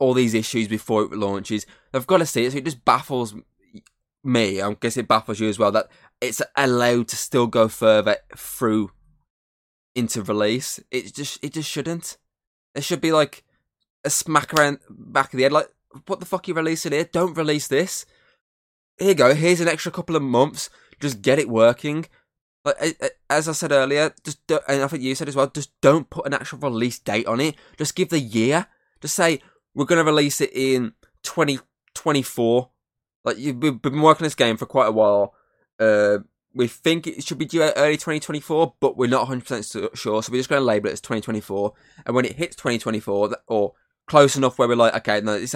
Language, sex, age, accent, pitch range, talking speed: English, male, 10-29, British, 110-150 Hz, 210 wpm